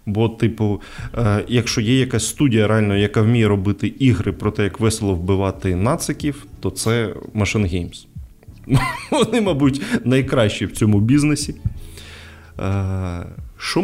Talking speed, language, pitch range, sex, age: 120 wpm, Ukrainian, 100-125 Hz, male, 20-39